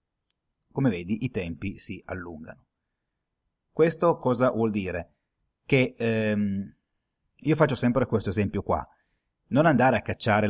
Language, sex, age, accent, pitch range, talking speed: Italian, male, 30-49, native, 100-120 Hz, 125 wpm